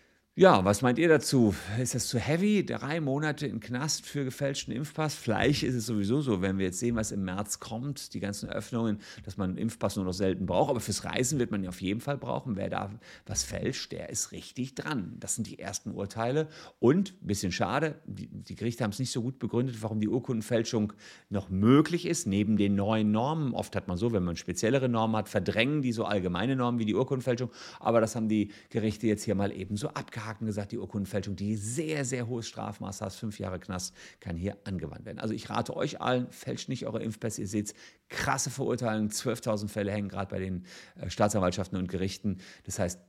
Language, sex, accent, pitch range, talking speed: German, male, German, 100-130 Hz, 215 wpm